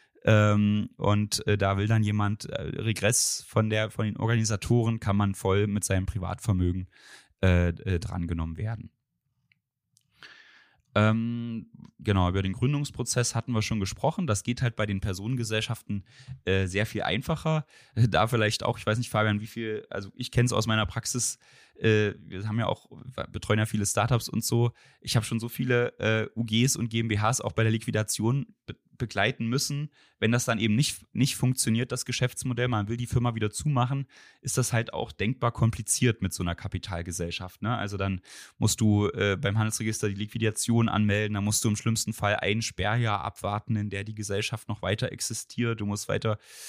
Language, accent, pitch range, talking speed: German, German, 105-120 Hz, 175 wpm